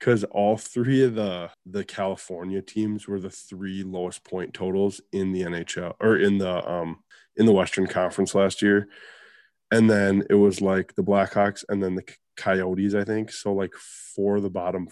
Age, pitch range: 20-39, 90-105 Hz